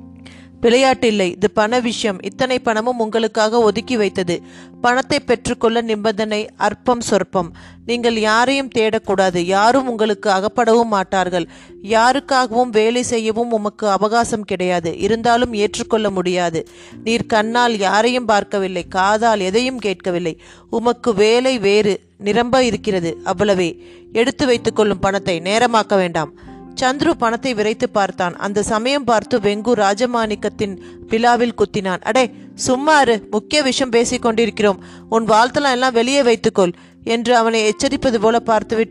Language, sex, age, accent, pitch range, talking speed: Tamil, female, 30-49, native, 195-245 Hz, 90 wpm